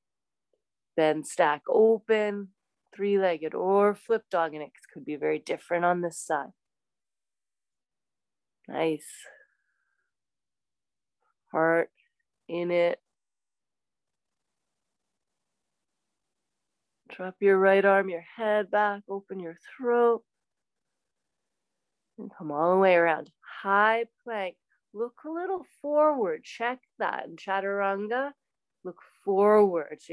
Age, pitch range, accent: 30-49, 155-205 Hz, American